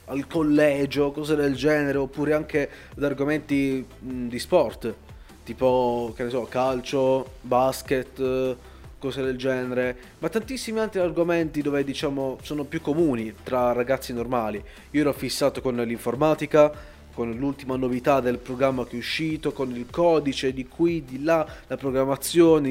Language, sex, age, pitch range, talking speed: Italian, male, 20-39, 130-160 Hz, 145 wpm